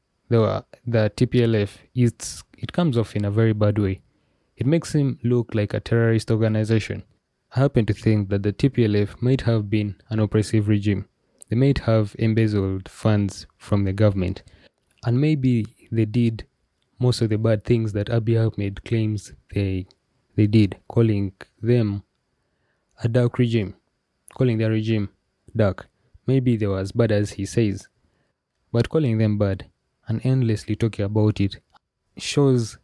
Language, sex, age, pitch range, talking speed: English, male, 20-39, 100-115 Hz, 150 wpm